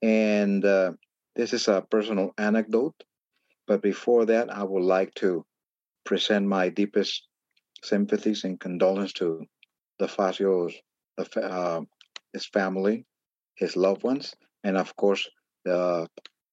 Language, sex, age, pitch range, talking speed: English, male, 50-69, 95-115 Hz, 120 wpm